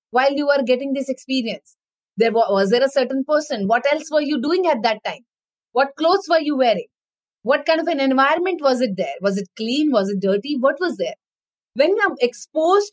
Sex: female